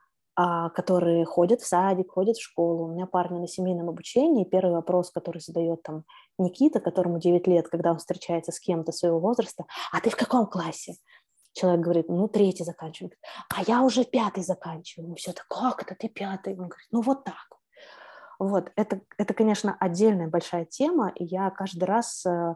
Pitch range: 175-215 Hz